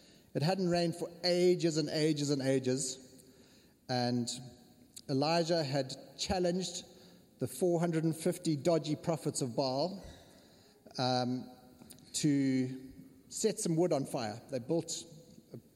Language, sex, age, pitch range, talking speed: English, male, 30-49, 125-160 Hz, 110 wpm